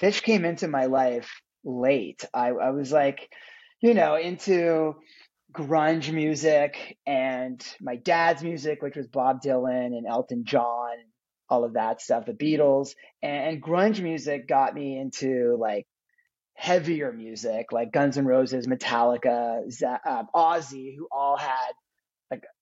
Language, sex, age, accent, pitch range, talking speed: English, male, 30-49, American, 130-180 Hz, 140 wpm